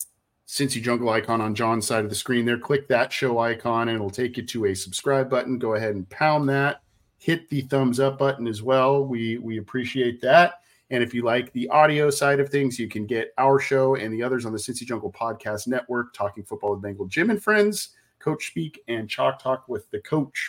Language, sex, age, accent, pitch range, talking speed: English, male, 40-59, American, 105-135 Hz, 225 wpm